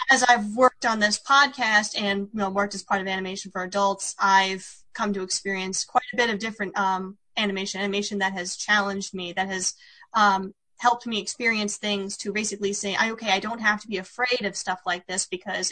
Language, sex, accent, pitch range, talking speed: English, female, American, 195-240 Hz, 205 wpm